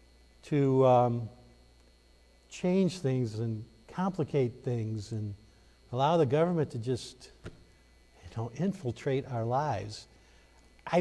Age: 50-69